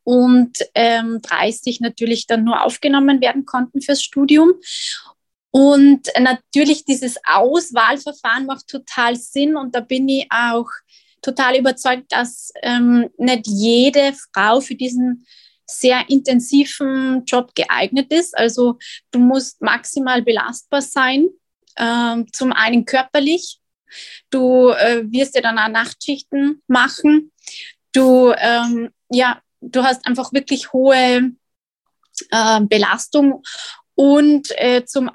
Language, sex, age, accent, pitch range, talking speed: German, female, 20-39, German, 230-275 Hz, 115 wpm